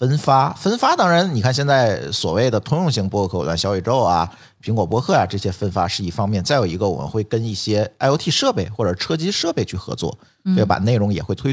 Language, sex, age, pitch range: Chinese, male, 50-69, 95-135 Hz